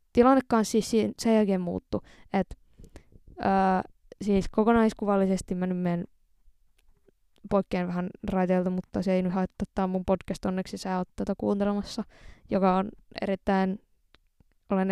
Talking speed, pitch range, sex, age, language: 115 wpm, 185-210 Hz, female, 20-39, Finnish